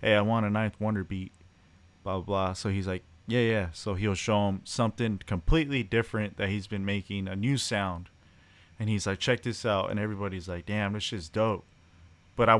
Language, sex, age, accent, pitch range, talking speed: English, male, 20-39, American, 90-115 Hz, 210 wpm